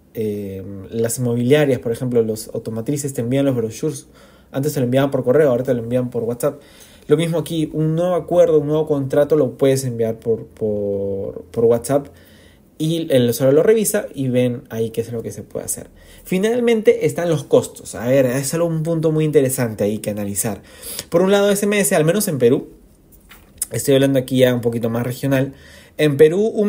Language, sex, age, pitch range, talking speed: Spanish, male, 30-49, 120-160 Hz, 200 wpm